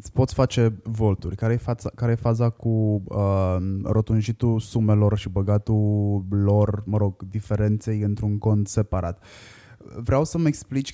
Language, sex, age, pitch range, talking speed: Romanian, male, 20-39, 100-125 Hz, 135 wpm